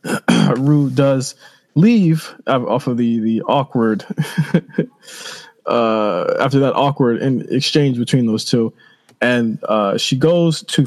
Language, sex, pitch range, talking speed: English, male, 110-140 Hz, 120 wpm